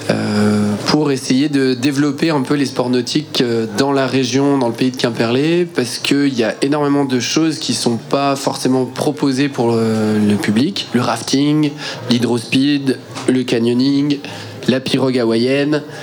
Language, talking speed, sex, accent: French, 155 wpm, male, French